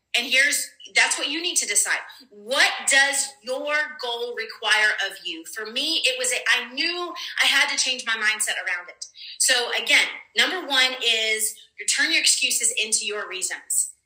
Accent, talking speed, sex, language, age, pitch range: American, 175 wpm, female, English, 30-49, 220-300 Hz